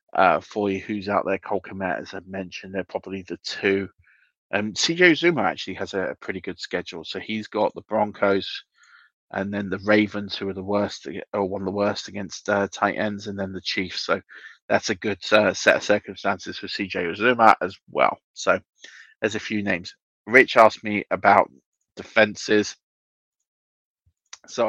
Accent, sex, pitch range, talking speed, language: British, male, 100-105 Hz, 180 wpm, English